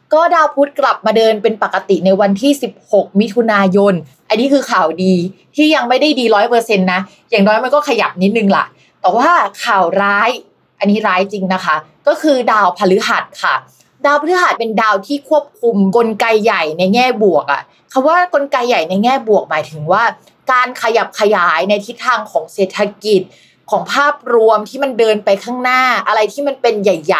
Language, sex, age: Thai, female, 20-39